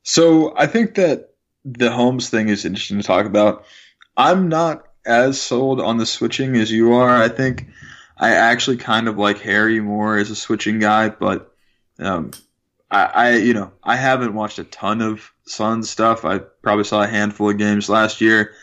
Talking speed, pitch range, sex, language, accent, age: 185 wpm, 105-125 Hz, male, English, American, 20-39